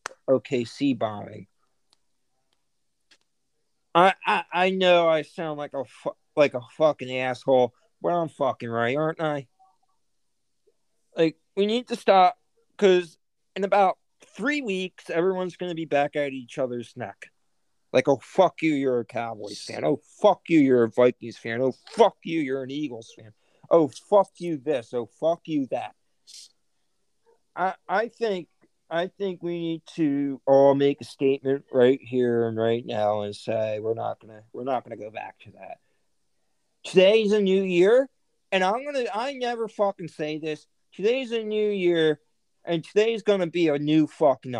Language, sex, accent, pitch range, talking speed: English, male, American, 130-200 Hz, 165 wpm